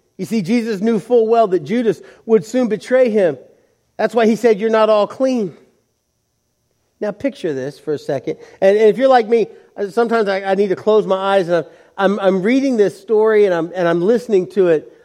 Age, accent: 40-59, American